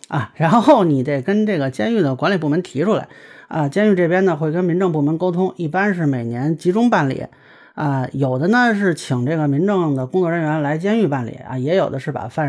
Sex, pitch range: male, 135-200 Hz